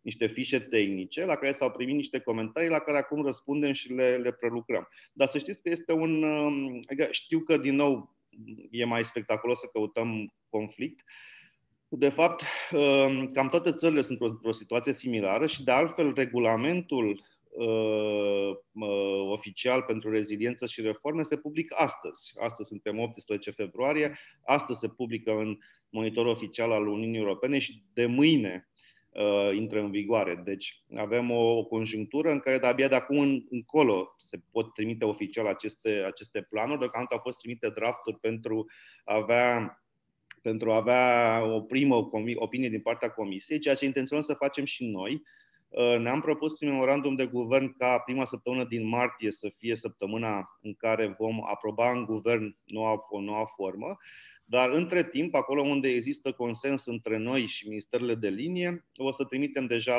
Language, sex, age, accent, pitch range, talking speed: Romanian, male, 30-49, native, 110-140 Hz, 160 wpm